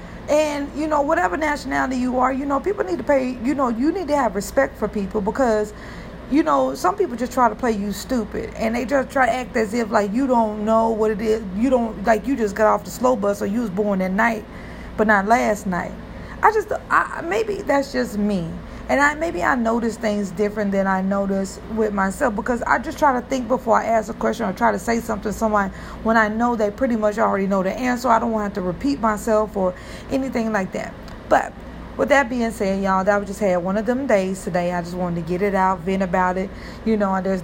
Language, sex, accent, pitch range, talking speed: English, female, American, 195-250 Hz, 245 wpm